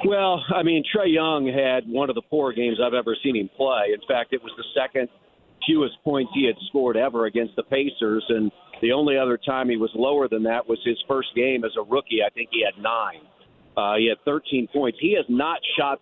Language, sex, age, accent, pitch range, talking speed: English, male, 50-69, American, 125-155 Hz, 230 wpm